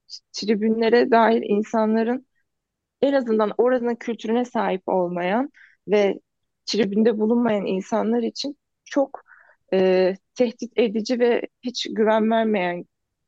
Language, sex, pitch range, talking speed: Turkish, female, 185-230 Hz, 95 wpm